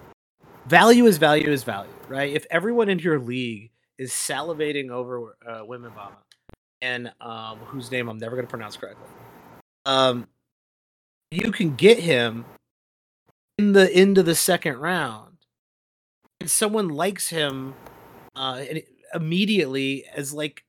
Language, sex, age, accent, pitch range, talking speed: English, male, 30-49, American, 125-165 Hz, 135 wpm